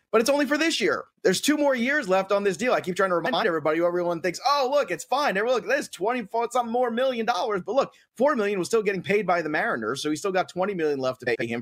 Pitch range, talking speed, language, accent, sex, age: 135-200 Hz, 295 wpm, English, American, male, 30-49